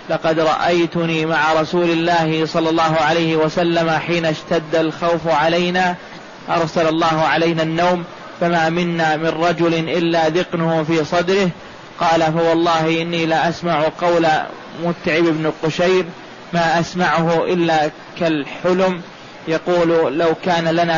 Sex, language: male, Arabic